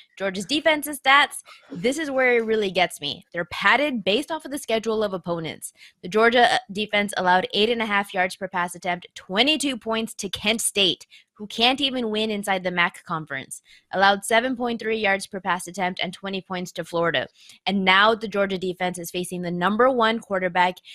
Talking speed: 180 wpm